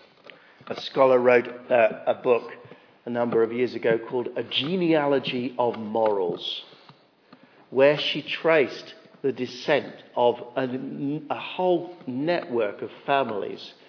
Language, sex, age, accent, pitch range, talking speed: English, male, 50-69, British, 115-160 Hz, 120 wpm